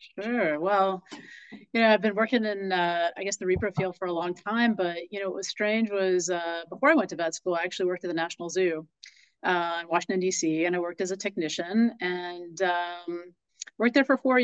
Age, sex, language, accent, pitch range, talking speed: 30-49, female, English, American, 180-225 Hz, 230 wpm